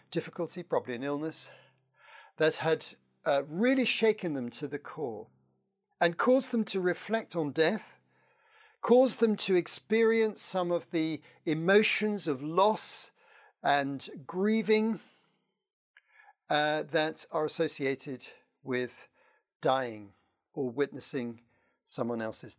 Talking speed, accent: 110 wpm, British